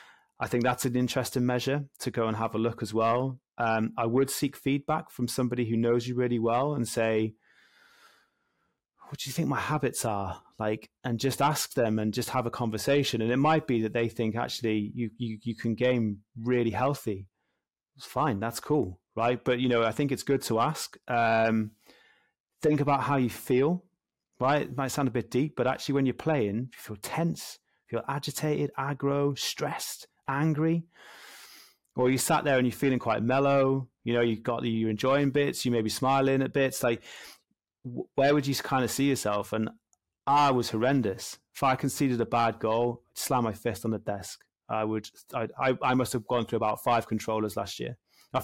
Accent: British